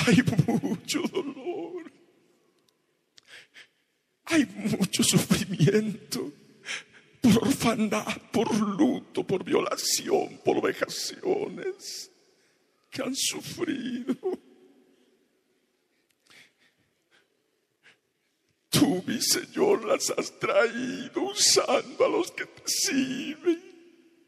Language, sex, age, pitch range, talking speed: Spanish, male, 60-79, 240-380 Hz, 70 wpm